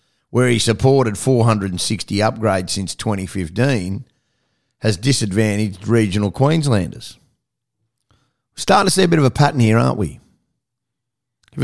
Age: 50-69